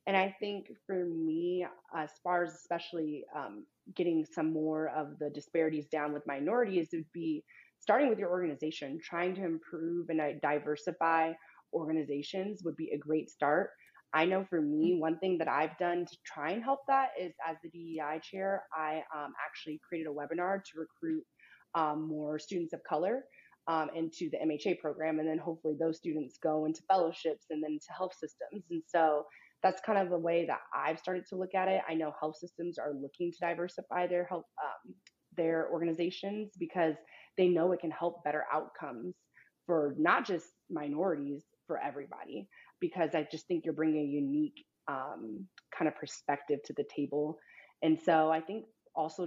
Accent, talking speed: American, 180 wpm